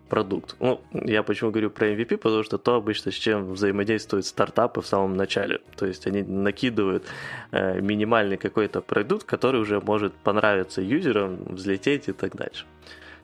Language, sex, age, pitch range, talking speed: Ukrainian, male, 20-39, 100-120 Hz, 155 wpm